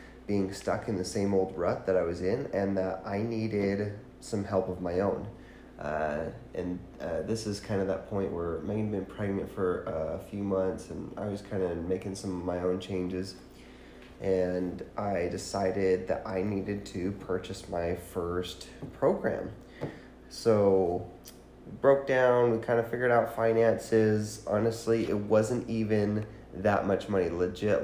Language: English